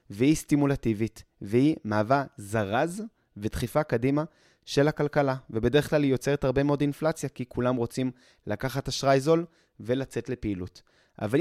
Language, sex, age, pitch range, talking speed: Hebrew, male, 20-39, 115-150 Hz, 130 wpm